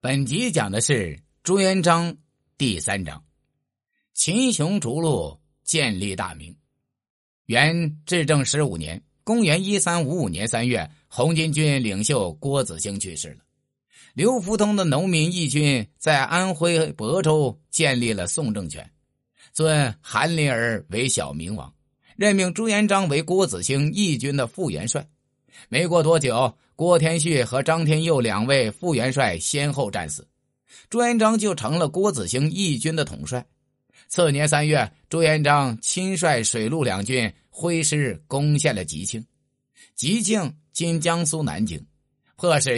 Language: Chinese